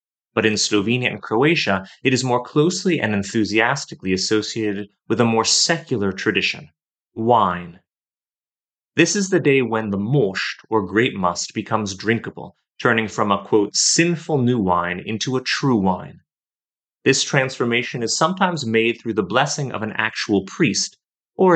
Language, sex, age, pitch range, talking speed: English, male, 30-49, 100-135 Hz, 150 wpm